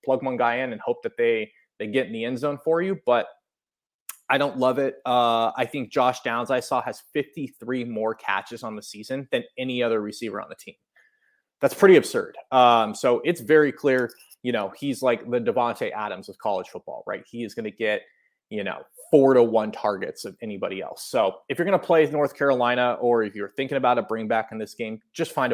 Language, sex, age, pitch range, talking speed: English, male, 20-39, 115-135 Hz, 225 wpm